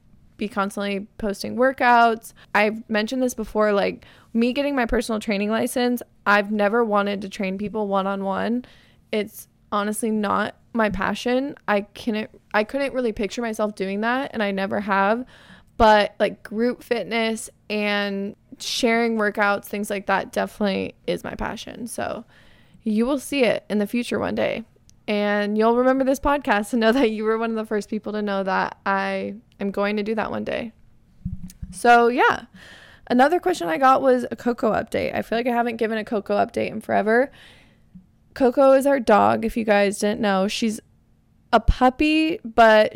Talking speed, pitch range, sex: 170 wpm, 205-240 Hz, female